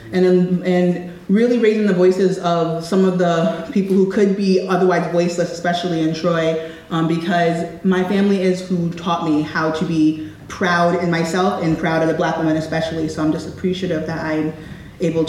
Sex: female